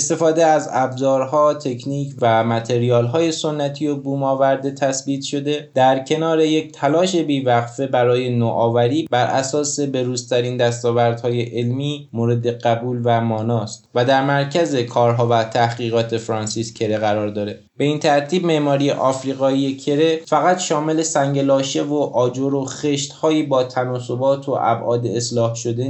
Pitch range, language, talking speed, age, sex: 120-145 Hz, Persian, 130 wpm, 20-39, male